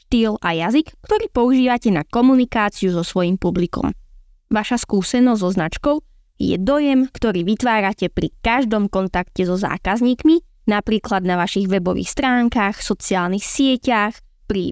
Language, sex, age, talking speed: Slovak, female, 20-39, 125 wpm